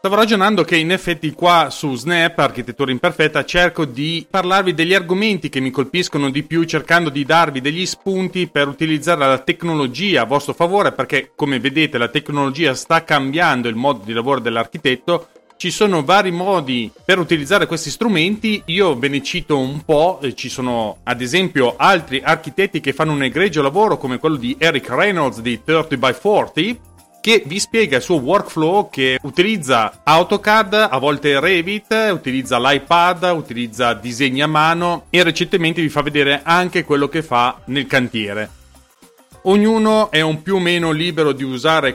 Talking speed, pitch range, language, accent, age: 165 wpm, 135-180 Hz, Italian, native, 30-49